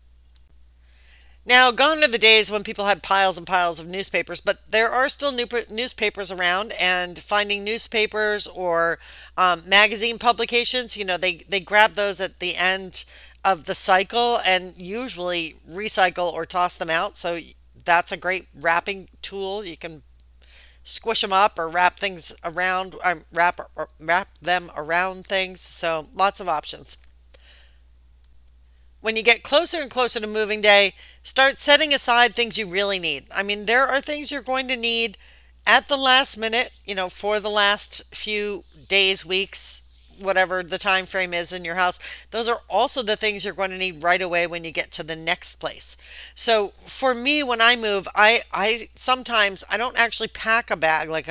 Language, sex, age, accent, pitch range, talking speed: English, female, 40-59, American, 170-225 Hz, 175 wpm